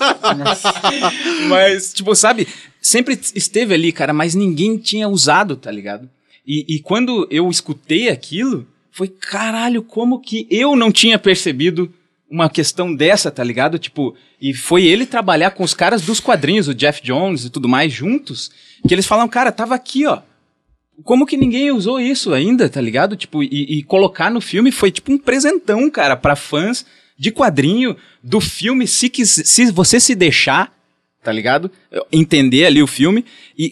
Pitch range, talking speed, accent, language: 140-230 Hz, 165 wpm, Brazilian, Portuguese